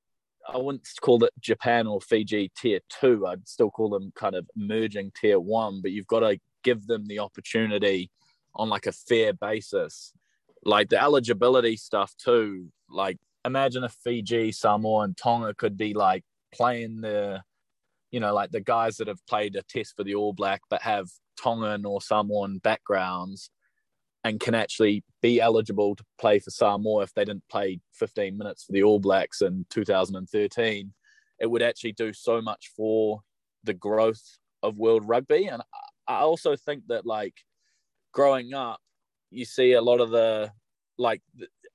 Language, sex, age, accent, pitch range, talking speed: English, male, 20-39, Australian, 105-130 Hz, 165 wpm